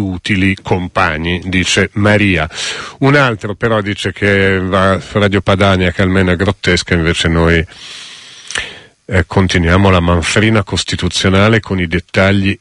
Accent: native